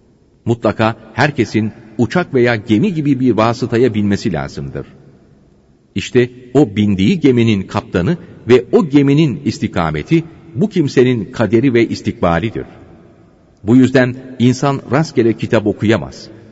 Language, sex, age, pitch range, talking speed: Turkish, male, 40-59, 100-130 Hz, 110 wpm